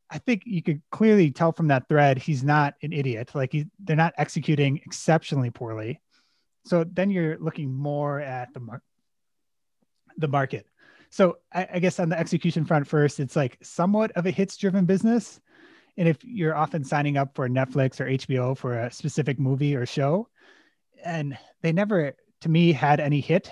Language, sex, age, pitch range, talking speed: English, male, 30-49, 130-170 Hz, 170 wpm